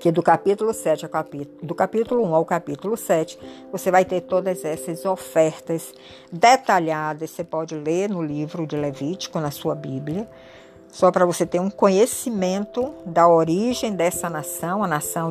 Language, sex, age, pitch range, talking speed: Portuguese, female, 60-79, 155-205 Hz, 160 wpm